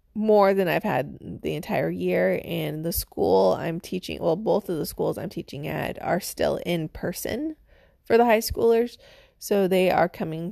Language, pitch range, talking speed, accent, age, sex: English, 155-205 Hz, 185 wpm, American, 20-39, female